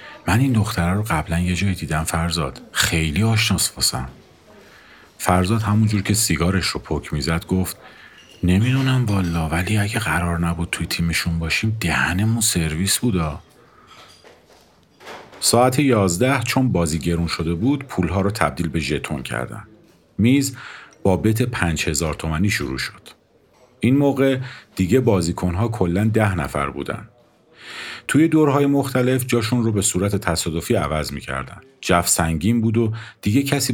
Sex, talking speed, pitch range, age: male, 140 wpm, 85-120 Hz, 50-69